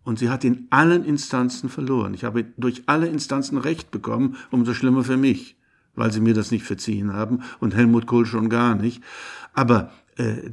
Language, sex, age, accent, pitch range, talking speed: German, male, 60-79, German, 115-135 Hz, 190 wpm